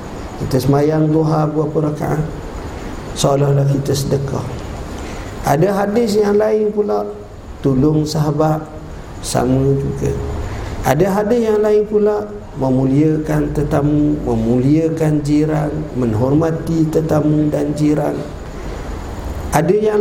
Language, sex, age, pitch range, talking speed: Malay, male, 50-69, 120-155 Hz, 95 wpm